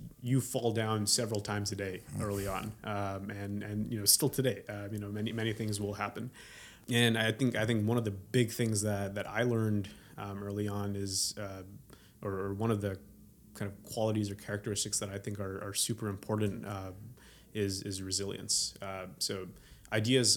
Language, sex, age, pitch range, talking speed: English, male, 30-49, 100-110 Hz, 195 wpm